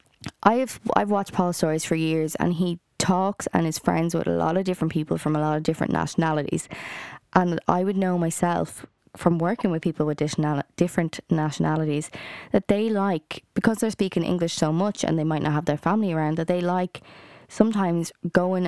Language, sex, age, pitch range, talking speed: English, female, 20-39, 160-195 Hz, 195 wpm